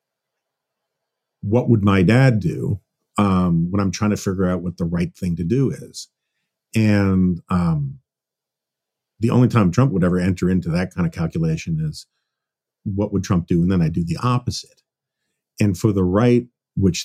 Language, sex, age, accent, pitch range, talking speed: English, male, 50-69, American, 95-130 Hz, 175 wpm